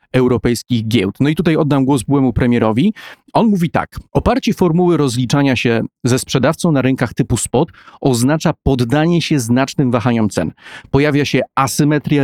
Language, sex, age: Polish, male, 40-59